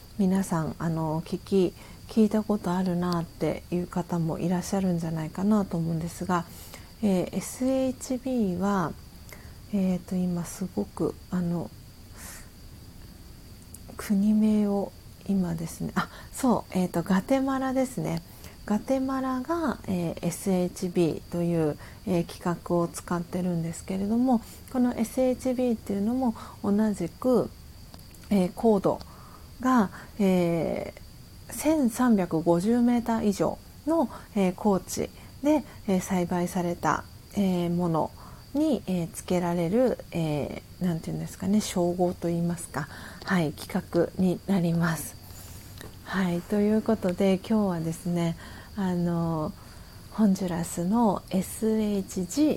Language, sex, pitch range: Japanese, female, 170-210 Hz